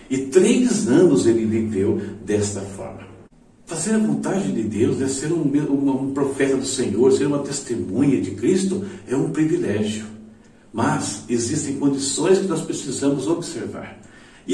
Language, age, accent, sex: Portuguese, 60-79, Brazilian, male